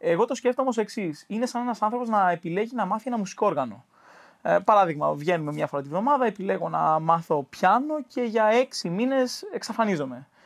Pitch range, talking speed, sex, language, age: 165-235 Hz, 180 wpm, male, Greek, 20-39